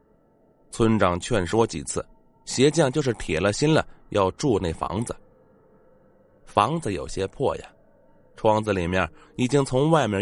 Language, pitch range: Chinese, 100-150 Hz